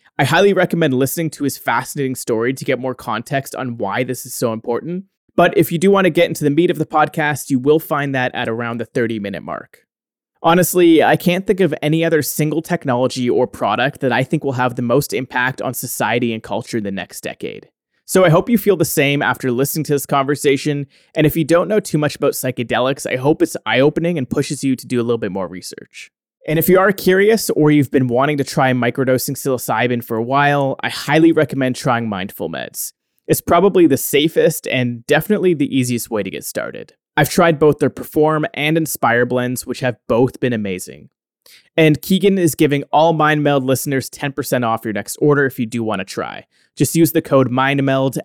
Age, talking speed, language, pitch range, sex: 30-49, 215 wpm, English, 125-160 Hz, male